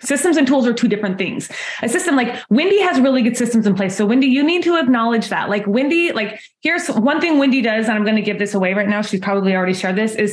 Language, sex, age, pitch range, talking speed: English, female, 20-39, 205-255 Hz, 275 wpm